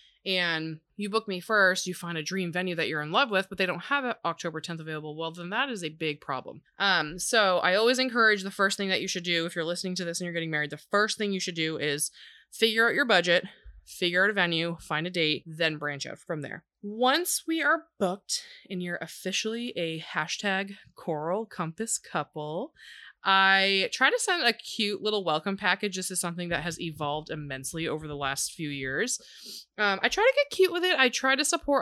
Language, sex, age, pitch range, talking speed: English, female, 20-39, 165-235 Hz, 225 wpm